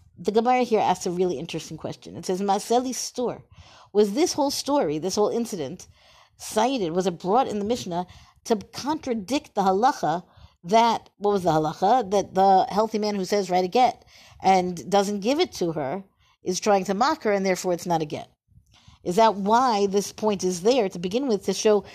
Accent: American